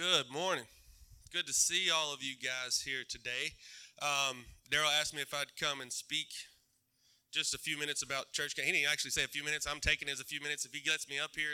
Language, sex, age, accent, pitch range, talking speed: English, male, 20-39, American, 135-160 Hz, 245 wpm